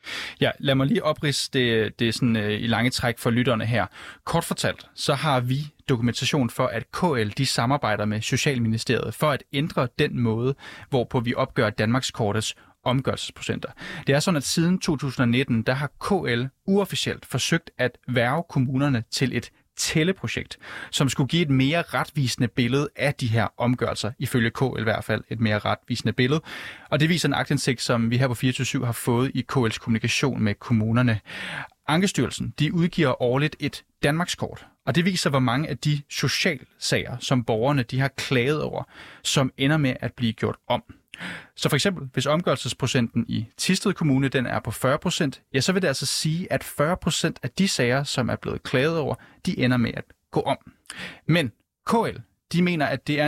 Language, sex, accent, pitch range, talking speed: Danish, male, native, 120-150 Hz, 180 wpm